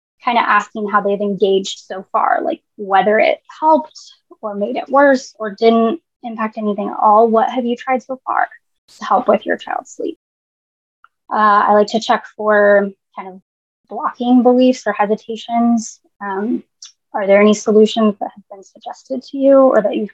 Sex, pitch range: female, 205-250 Hz